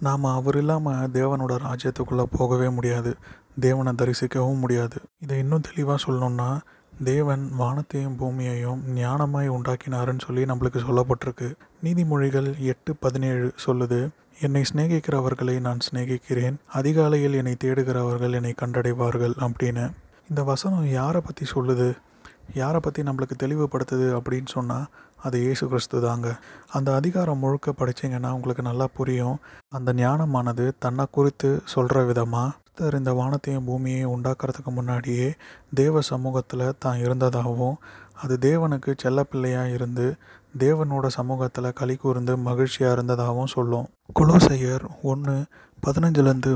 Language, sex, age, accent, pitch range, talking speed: Tamil, male, 30-49, native, 125-140 Hz, 110 wpm